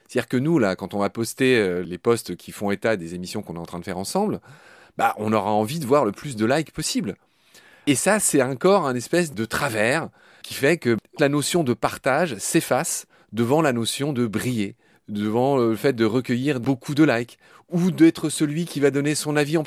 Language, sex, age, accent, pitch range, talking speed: French, male, 30-49, French, 105-145 Hz, 220 wpm